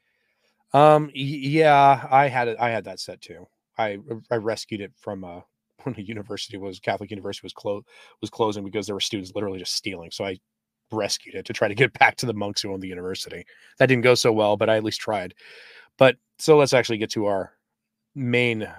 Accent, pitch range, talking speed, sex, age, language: American, 105-130 Hz, 210 wpm, male, 30-49, English